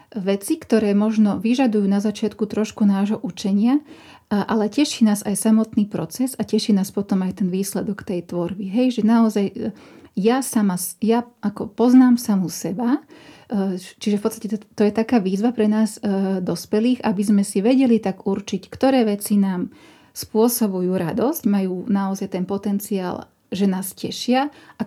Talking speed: 155 wpm